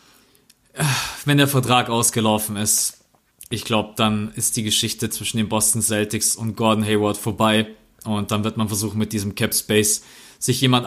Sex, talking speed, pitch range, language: male, 165 wpm, 110-130 Hz, German